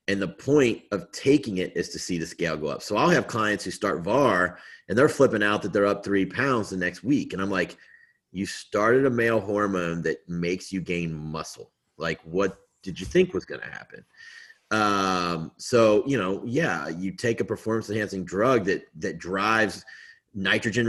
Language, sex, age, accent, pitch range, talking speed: English, male, 30-49, American, 90-110 Hz, 200 wpm